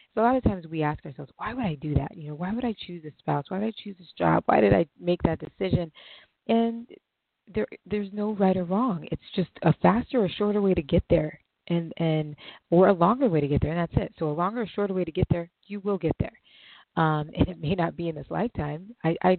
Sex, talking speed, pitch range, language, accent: female, 265 wpm, 145-170 Hz, English, American